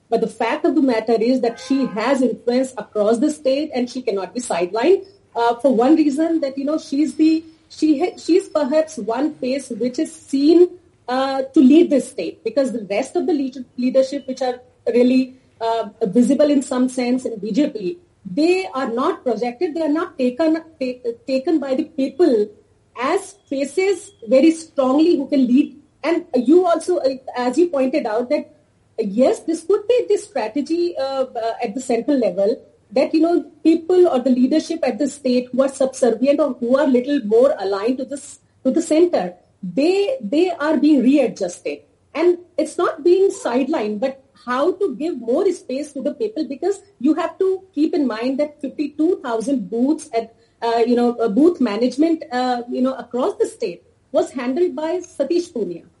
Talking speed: 180 wpm